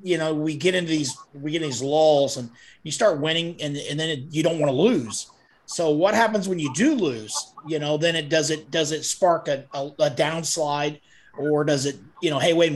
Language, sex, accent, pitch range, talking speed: English, male, American, 145-180 Hz, 225 wpm